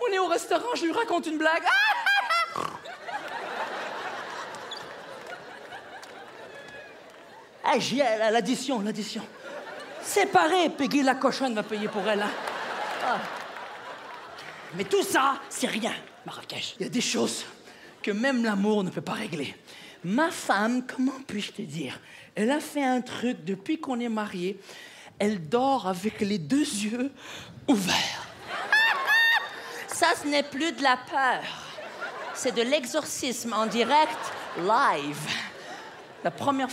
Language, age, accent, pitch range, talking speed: French, 50-69, French, 210-305 Hz, 130 wpm